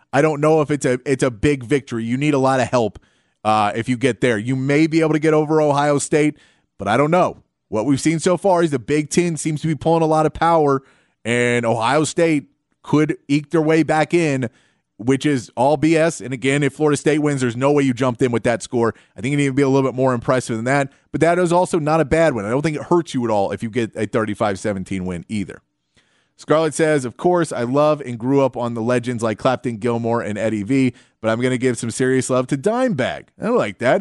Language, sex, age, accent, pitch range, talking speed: English, male, 30-49, American, 120-150 Hz, 255 wpm